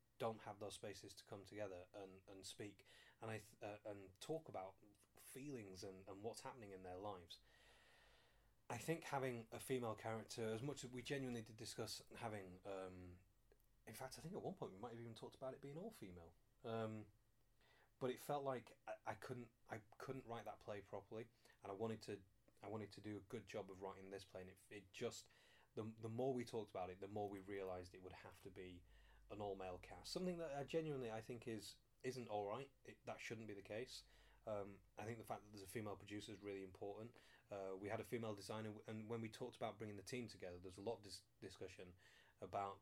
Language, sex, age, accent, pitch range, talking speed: English, male, 30-49, British, 95-120 Hz, 225 wpm